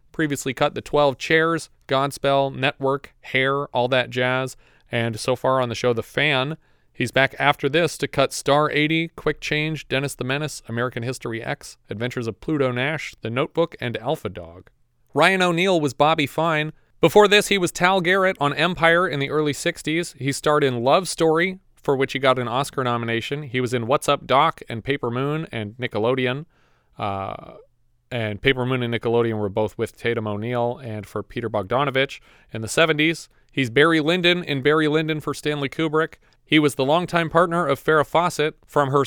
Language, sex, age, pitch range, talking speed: English, male, 30-49, 125-155 Hz, 185 wpm